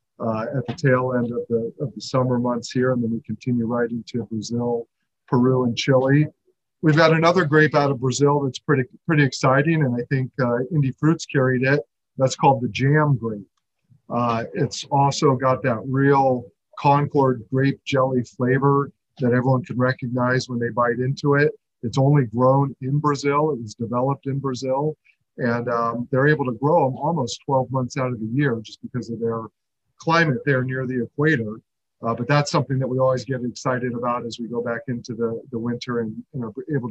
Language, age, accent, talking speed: English, 50-69, American, 195 wpm